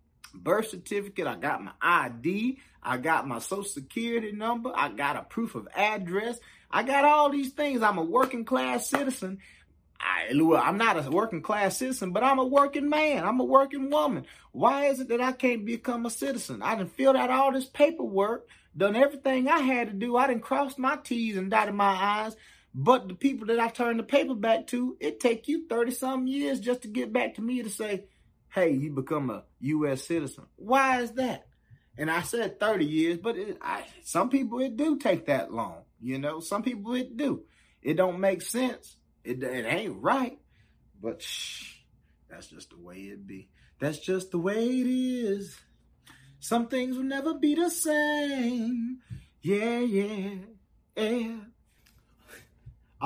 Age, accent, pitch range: 30-49, American, 195-260 Hz